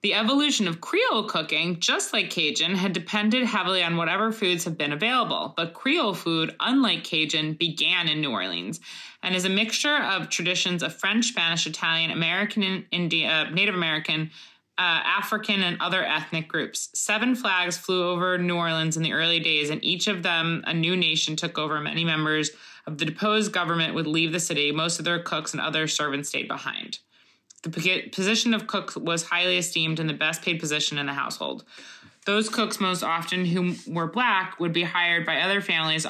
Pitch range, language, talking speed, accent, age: 155-190 Hz, English, 185 wpm, American, 20-39